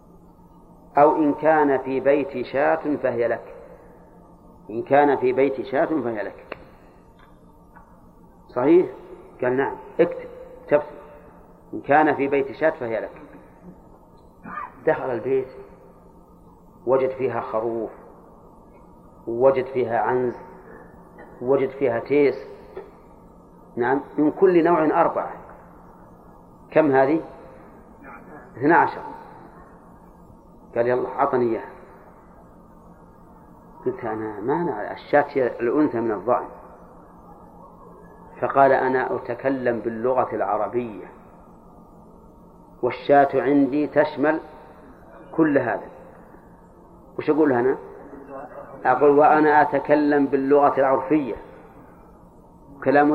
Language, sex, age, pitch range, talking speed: Arabic, male, 40-59, 130-155 Hz, 85 wpm